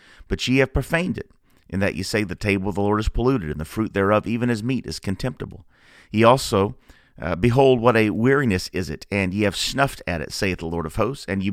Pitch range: 90-120 Hz